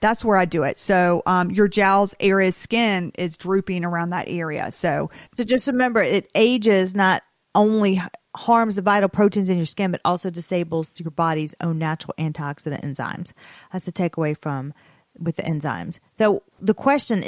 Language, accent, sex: English, American, female